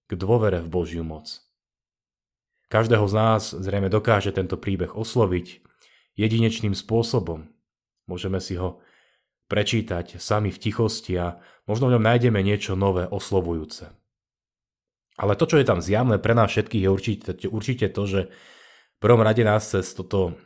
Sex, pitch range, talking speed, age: male, 95-115 Hz, 140 wpm, 30-49